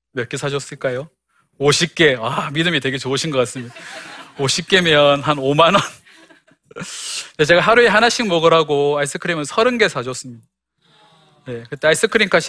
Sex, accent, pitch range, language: male, native, 145-195 Hz, Korean